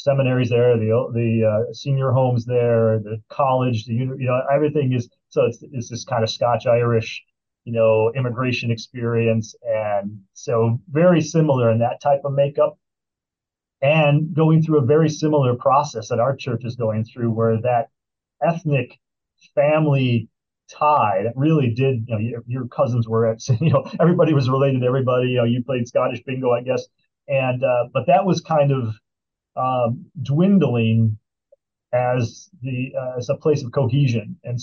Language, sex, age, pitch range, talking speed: English, male, 30-49, 115-140 Hz, 170 wpm